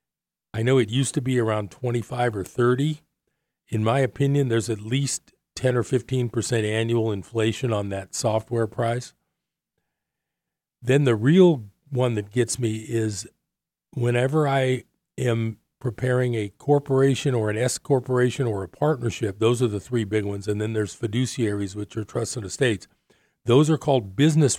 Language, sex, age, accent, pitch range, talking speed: English, male, 40-59, American, 110-130 Hz, 160 wpm